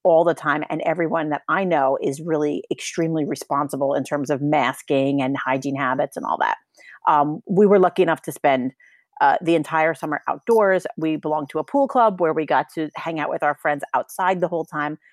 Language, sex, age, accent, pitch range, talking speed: English, female, 40-59, American, 155-205 Hz, 210 wpm